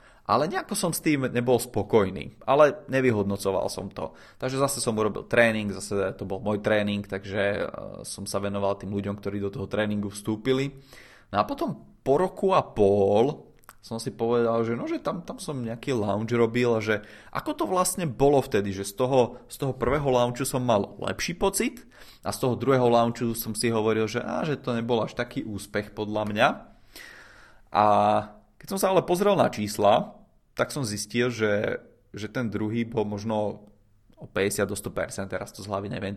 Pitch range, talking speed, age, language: 105-125 Hz, 185 wpm, 20-39, Czech